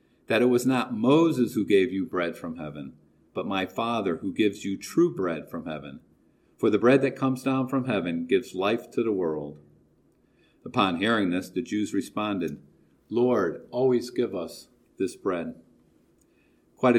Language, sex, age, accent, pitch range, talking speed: English, male, 50-69, American, 95-135 Hz, 165 wpm